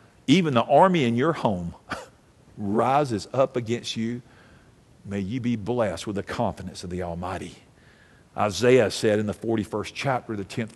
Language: English